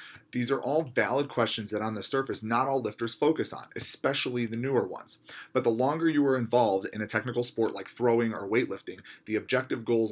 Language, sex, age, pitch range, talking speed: English, male, 30-49, 110-135 Hz, 210 wpm